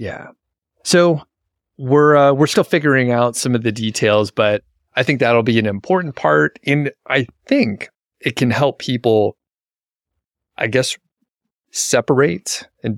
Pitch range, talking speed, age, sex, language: 100-125 Hz, 145 wpm, 30-49, male, English